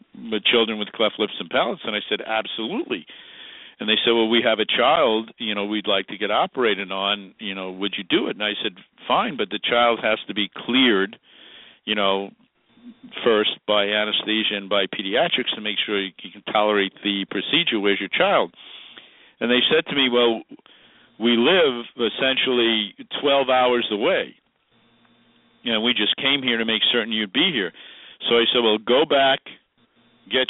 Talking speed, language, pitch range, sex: 185 wpm, English, 105-120 Hz, male